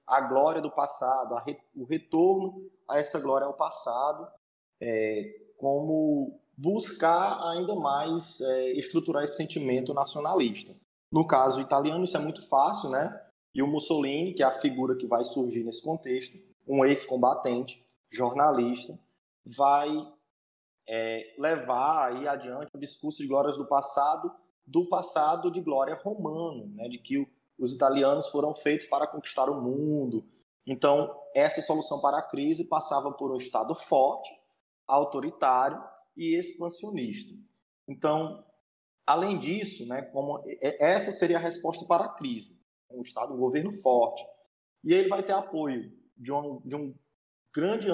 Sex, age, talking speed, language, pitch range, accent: male, 20-39, 145 wpm, Portuguese, 130-170 Hz, Brazilian